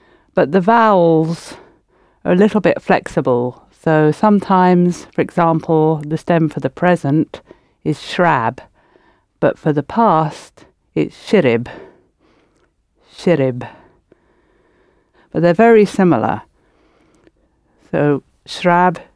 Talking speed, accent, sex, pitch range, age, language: 100 wpm, British, female, 150-190 Hz, 50-69, English